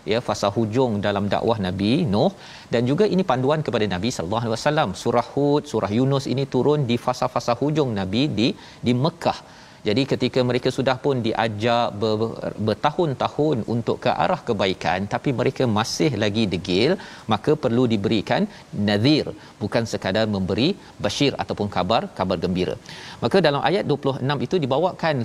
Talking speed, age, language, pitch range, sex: 155 wpm, 40-59, Malayalam, 110-145 Hz, male